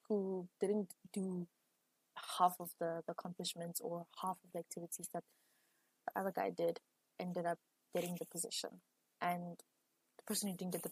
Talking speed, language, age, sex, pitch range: 165 wpm, English, 20-39, female, 170-190 Hz